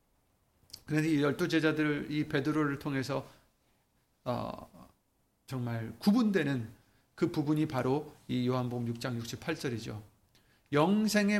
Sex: male